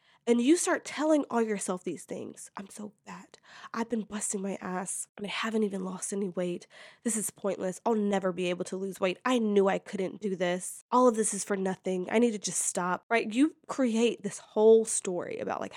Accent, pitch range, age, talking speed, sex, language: American, 200-280 Hz, 20-39, 220 wpm, female, English